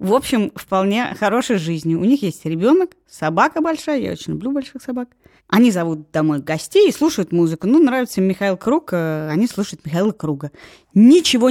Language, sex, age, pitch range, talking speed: Russian, female, 20-39, 175-250 Hz, 175 wpm